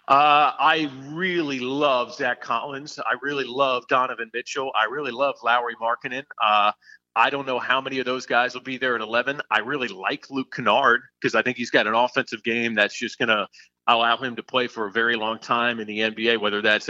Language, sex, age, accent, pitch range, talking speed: English, male, 40-59, American, 115-140 Hz, 215 wpm